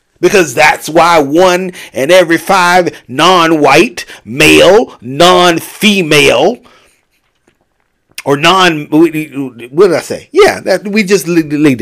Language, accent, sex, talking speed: English, American, male, 105 wpm